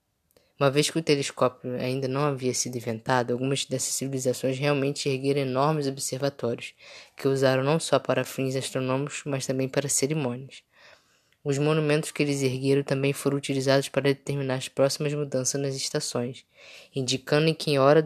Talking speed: 160 wpm